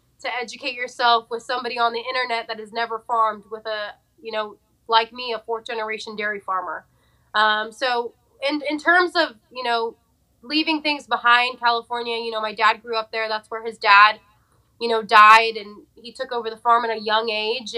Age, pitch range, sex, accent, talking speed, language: 20-39, 215-240 Hz, female, American, 200 wpm, English